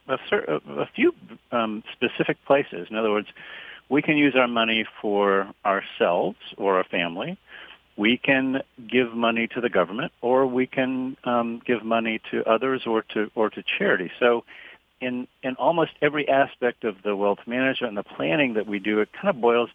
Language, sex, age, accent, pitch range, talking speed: English, male, 50-69, American, 100-125 Hz, 175 wpm